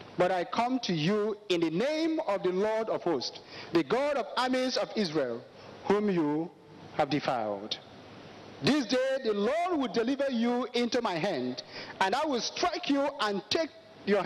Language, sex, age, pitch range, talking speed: English, male, 50-69, 180-270 Hz, 175 wpm